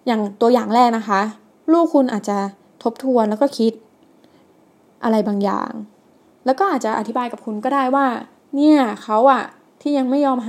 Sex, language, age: female, Thai, 20-39